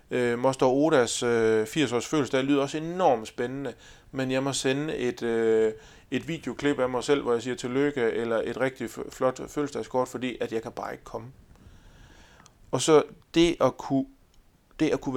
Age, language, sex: 30-49, Danish, male